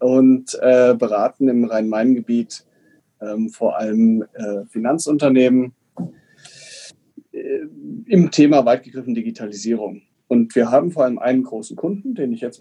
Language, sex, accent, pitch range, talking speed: German, male, German, 120-155 Hz, 125 wpm